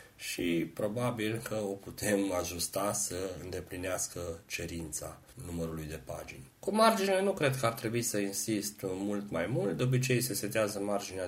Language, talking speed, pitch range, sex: Romanian, 155 wpm, 95-125 Hz, male